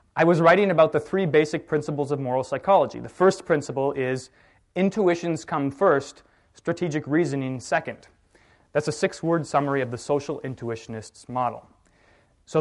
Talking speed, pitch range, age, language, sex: 150 wpm, 130-165 Hz, 20-39, English, male